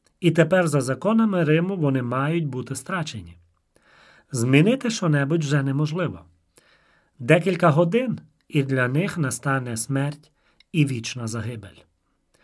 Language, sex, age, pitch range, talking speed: Ukrainian, male, 40-59, 125-175 Hz, 110 wpm